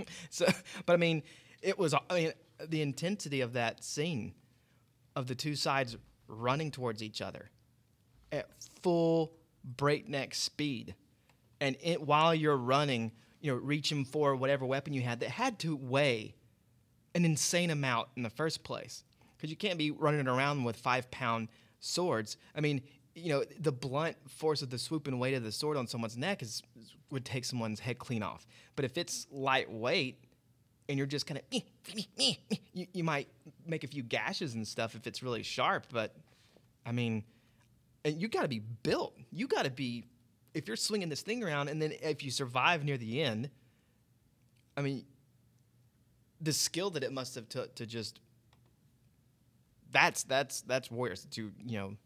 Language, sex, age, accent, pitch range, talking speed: English, male, 30-49, American, 120-150 Hz, 175 wpm